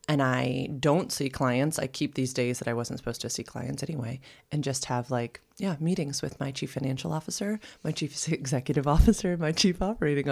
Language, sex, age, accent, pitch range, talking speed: English, female, 30-49, American, 135-185 Hz, 205 wpm